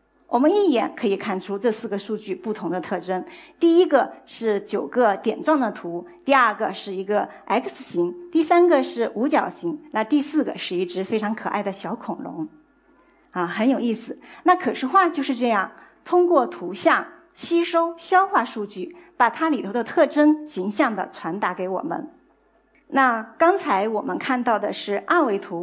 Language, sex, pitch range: Chinese, female, 210-320 Hz